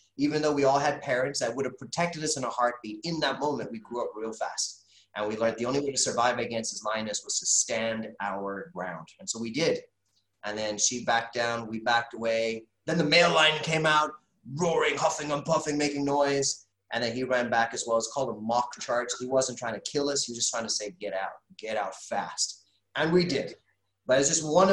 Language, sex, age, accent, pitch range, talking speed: English, male, 30-49, American, 115-160 Hz, 240 wpm